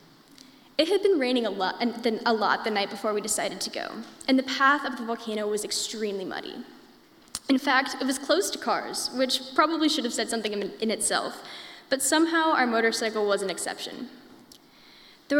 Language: English